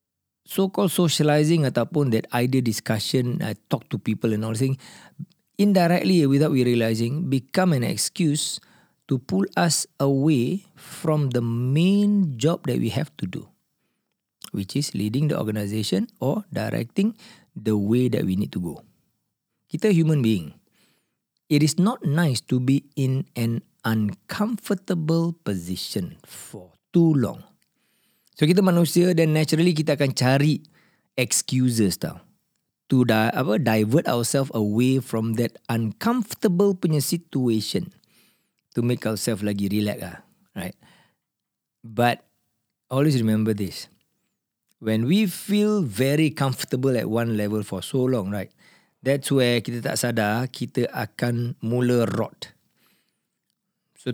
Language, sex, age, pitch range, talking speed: Malay, male, 40-59, 115-170 Hz, 125 wpm